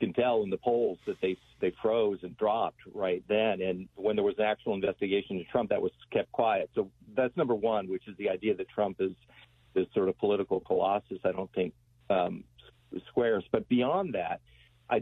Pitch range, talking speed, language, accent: 90-125 Hz, 195 wpm, English, American